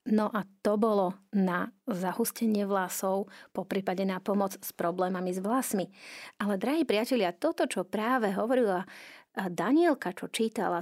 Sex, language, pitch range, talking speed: female, Slovak, 195-240 Hz, 135 wpm